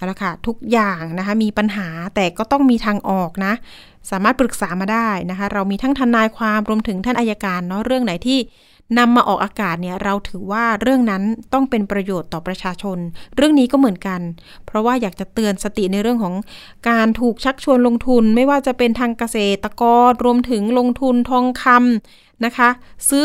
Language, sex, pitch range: Thai, female, 195-250 Hz